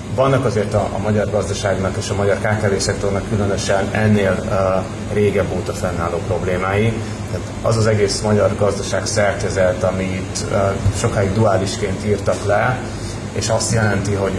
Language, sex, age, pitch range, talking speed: Hungarian, male, 30-49, 95-110 Hz, 140 wpm